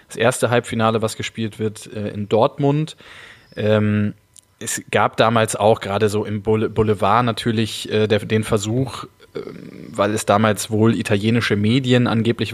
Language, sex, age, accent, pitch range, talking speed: German, male, 20-39, German, 105-120 Hz, 125 wpm